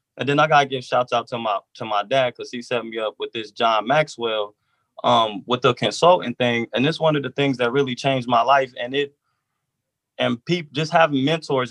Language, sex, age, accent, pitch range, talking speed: English, male, 20-39, American, 120-140 Hz, 225 wpm